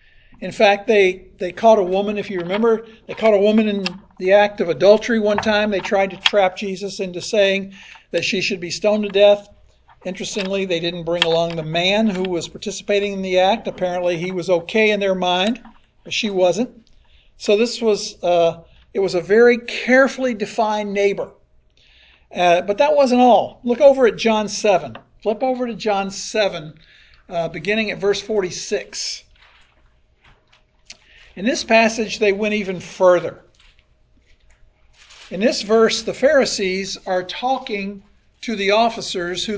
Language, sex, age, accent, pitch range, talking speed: English, male, 50-69, American, 185-225 Hz, 160 wpm